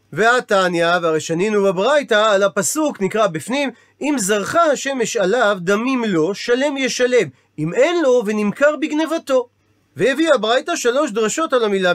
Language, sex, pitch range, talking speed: Hebrew, male, 190-255 Hz, 135 wpm